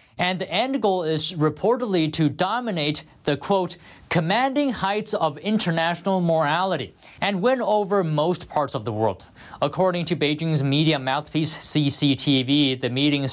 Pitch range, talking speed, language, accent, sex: 140-180 Hz, 140 wpm, English, American, male